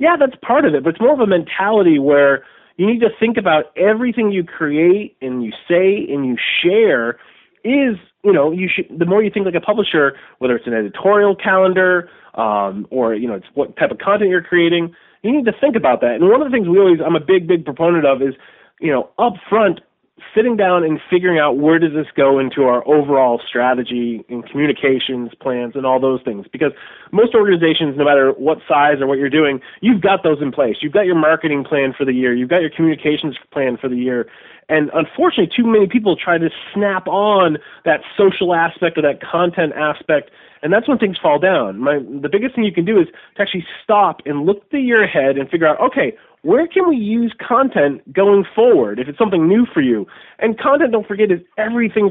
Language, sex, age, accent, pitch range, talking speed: English, male, 30-49, American, 140-210 Hz, 220 wpm